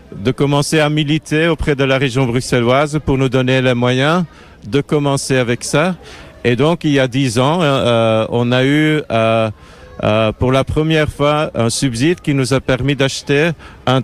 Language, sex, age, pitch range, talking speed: French, male, 50-69, 115-145 Hz, 185 wpm